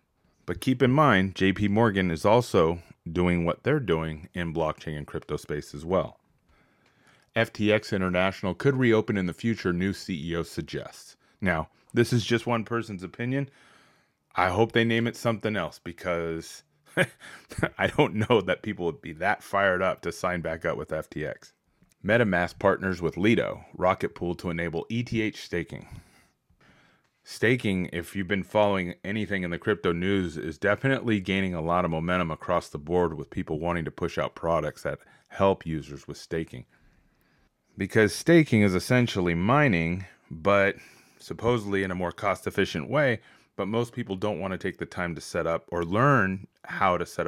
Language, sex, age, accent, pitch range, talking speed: English, male, 30-49, American, 85-110 Hz, 165 wpm